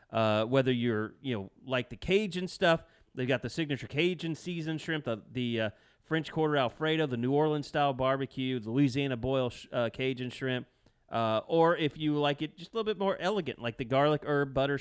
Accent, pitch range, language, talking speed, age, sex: American, 125-155 Hz, English, 205 wpm, 30-49, male